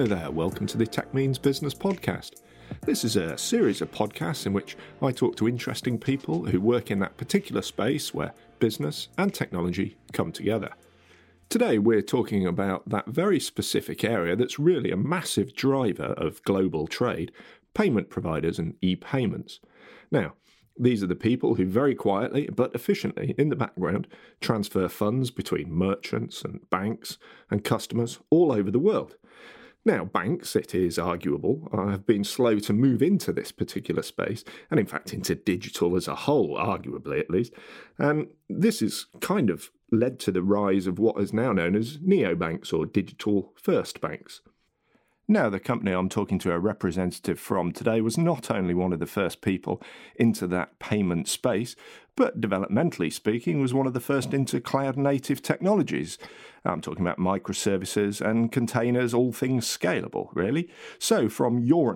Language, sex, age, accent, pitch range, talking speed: English, male, 40-59, British, 95-130 Hz, 165 wpm